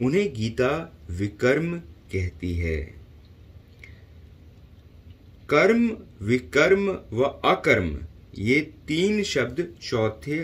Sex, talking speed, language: male, 75 wpm, English